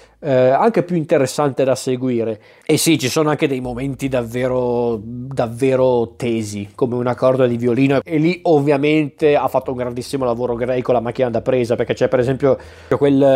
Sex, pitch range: male, 130-150 Hz